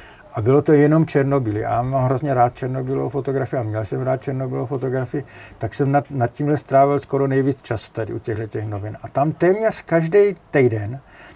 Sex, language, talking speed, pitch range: male, Czech, 185 wpm, 125-155 Hz